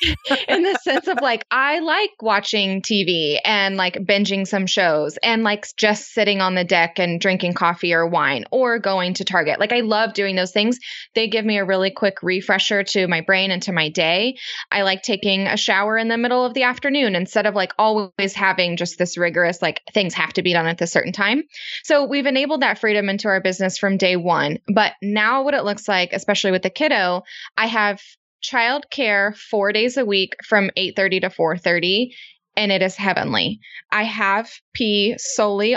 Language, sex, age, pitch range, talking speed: English, female, 20-39, 185-235 Hz, 200 wpm